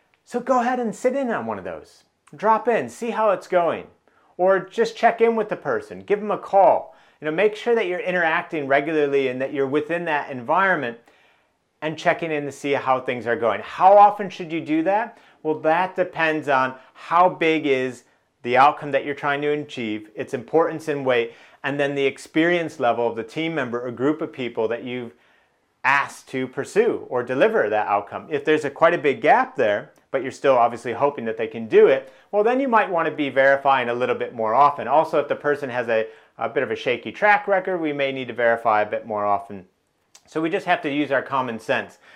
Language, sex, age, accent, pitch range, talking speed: English, male, 40-59, American, 125-180 Hz, 225 wpm